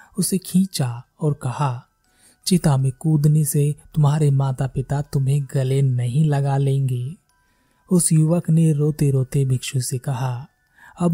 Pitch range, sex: 135-170 Hz, male